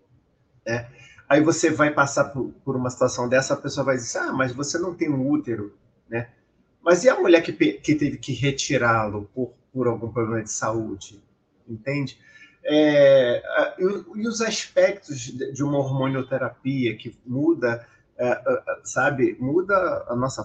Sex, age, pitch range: male, 30-49, 125-180 Hz